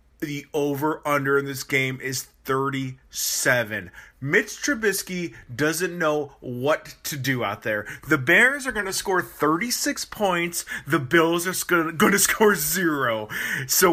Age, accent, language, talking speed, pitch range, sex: 30-49, American, English, 140 wpm, 140-200 Hz, male